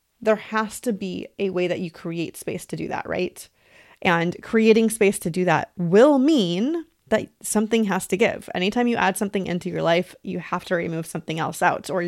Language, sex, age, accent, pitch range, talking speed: English, female, 30-49, American, 175-225 Hz, 210 wpm